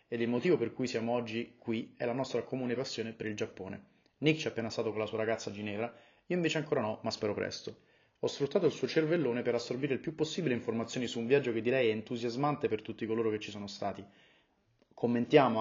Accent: native